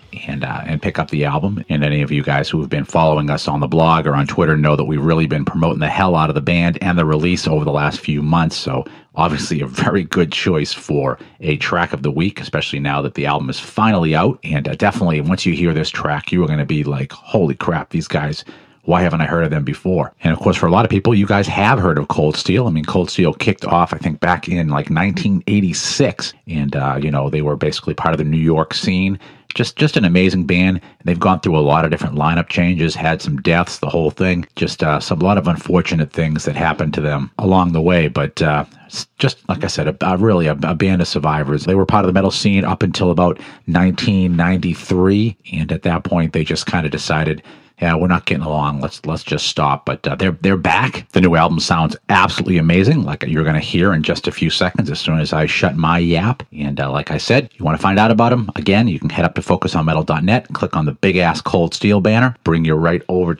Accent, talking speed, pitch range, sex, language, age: American, 250 wpm, 75-95 Hz, male, English, 40-59